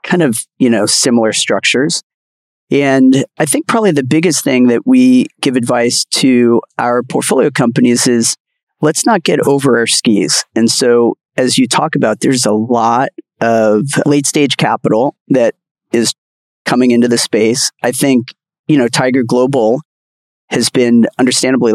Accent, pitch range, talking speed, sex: American, 115-140 Hz, 155 wpm, male